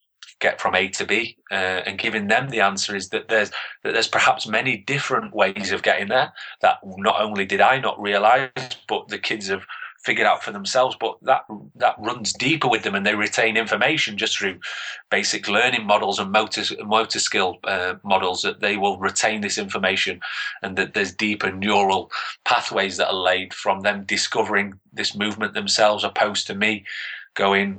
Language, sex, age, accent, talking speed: English, male, 30-49, British, 185 wpm